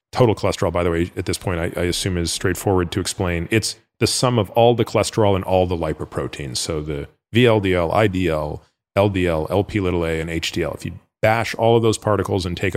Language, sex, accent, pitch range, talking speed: English, male, American, 90-115 Hz, 210 wpm